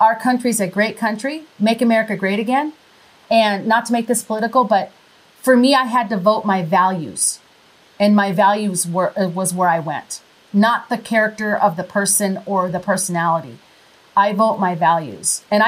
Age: 40-59